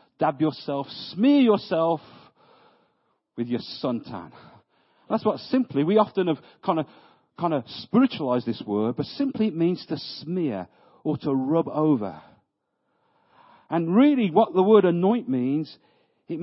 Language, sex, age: English, male, 50-69